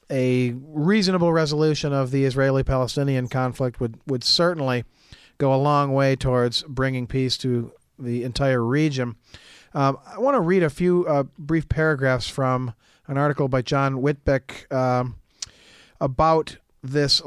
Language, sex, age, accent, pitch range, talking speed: English, male, 40-59, American, 125-150 Hz, 140 wpm